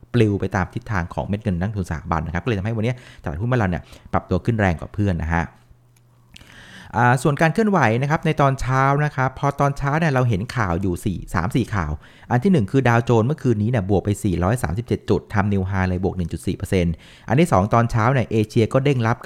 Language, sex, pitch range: Thai, male, 95-125 Hz